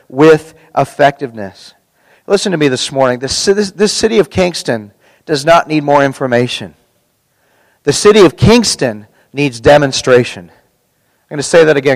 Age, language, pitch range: 40-59, English, 145-215 Hz